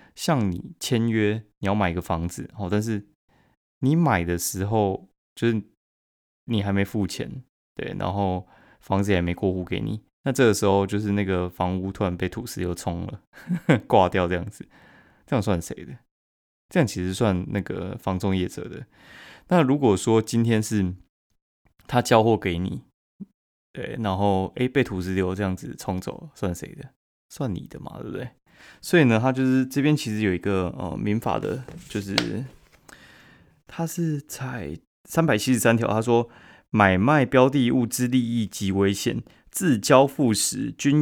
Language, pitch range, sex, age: Chinese, 95-125 Hz, male, 20-39